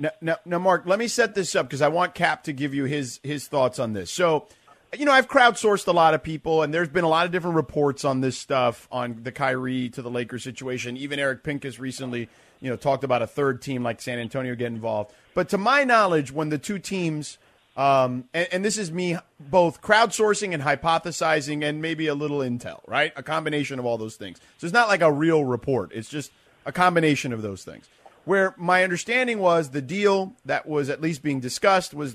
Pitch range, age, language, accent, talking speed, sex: 130-170 Hz, 30-49, English, American, 225 wpm, male